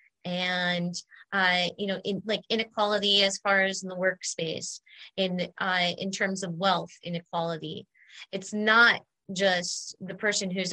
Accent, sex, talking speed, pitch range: American, female, 145 wpm, 170-200 Hz